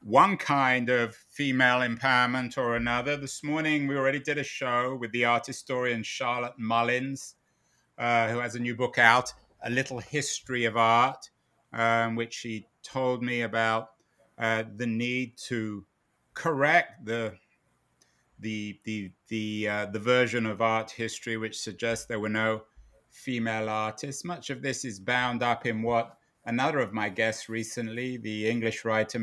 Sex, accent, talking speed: male, British, 155 wpm